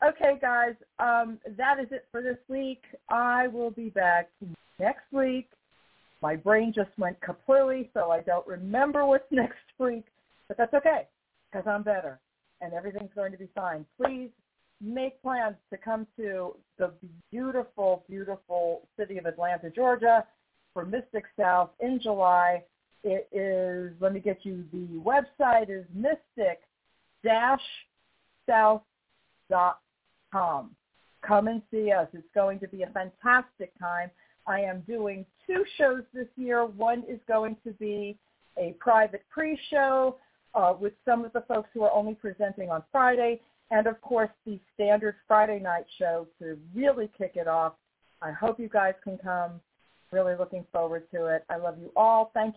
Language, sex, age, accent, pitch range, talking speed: English, female, 40-59, American, 180-240 Hz, 155 wpm